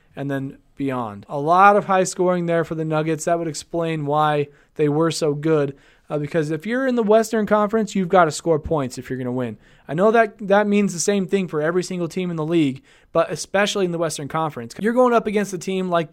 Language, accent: English, American